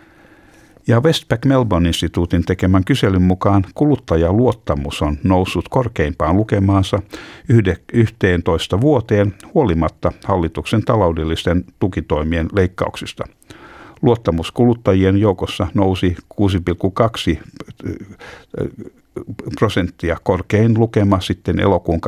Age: 60-79